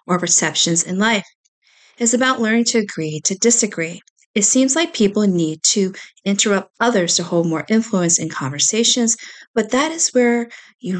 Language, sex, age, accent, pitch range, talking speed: English, female, 40-59, American, 175-230 Hz, 160 wpm